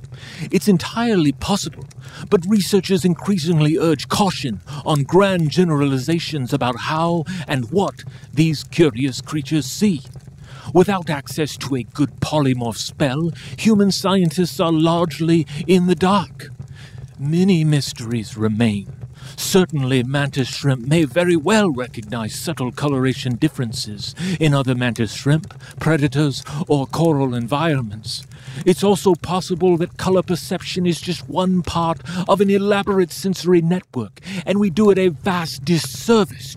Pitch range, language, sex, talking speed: 130-175 Hz, English, male, 125 wpm